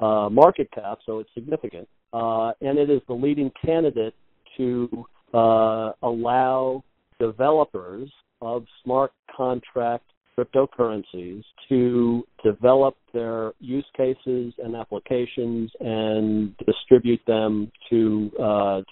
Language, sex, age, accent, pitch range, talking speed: English, male, 50-69, American, 115-130 Hz, 105 wpm